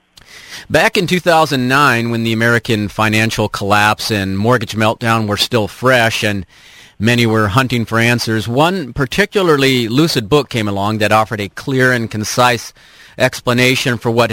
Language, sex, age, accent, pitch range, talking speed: English, male, 40-59, American, 110-135 Hz, 145 wpm